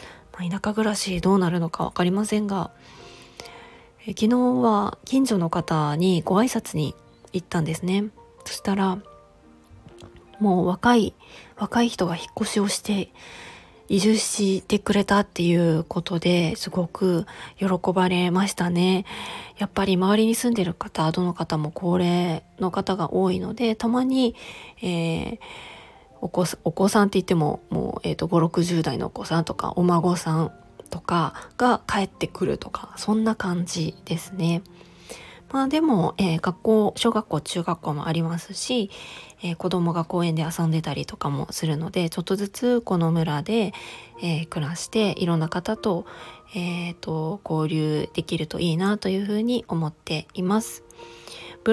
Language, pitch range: Japanese, 165-210 Hz